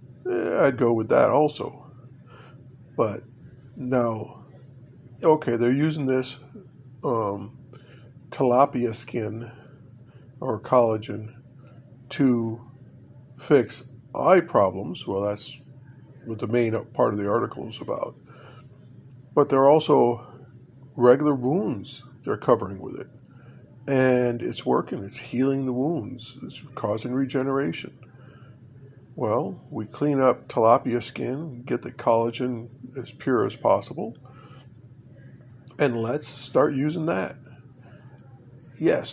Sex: male